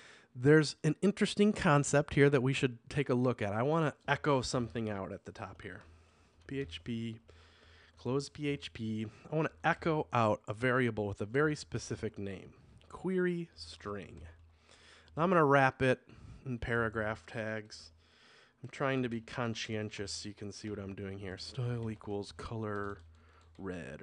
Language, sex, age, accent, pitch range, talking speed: English, male, 30-49, American, 85-130 Hz, 150 wpm